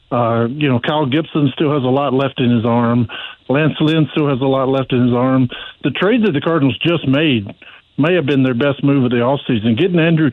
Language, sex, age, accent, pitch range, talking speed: English, male, 50-69, American, 125-155 Hz, 240 wpm